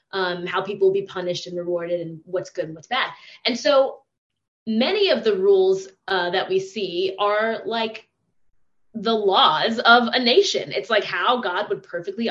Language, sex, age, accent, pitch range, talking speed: English, female, 20-39, American, 175-225 Hz, 180 wpm